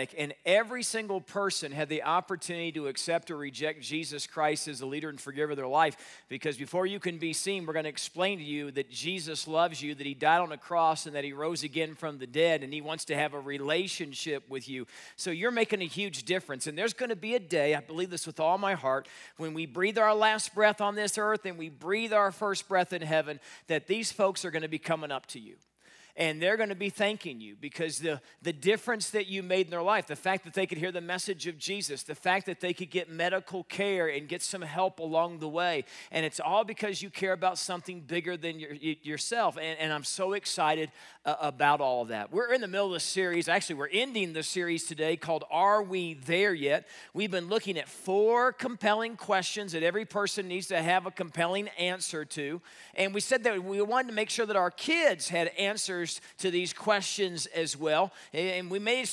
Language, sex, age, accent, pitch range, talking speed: English, male, 40-59, American, 160-205 Hz, 235 wpm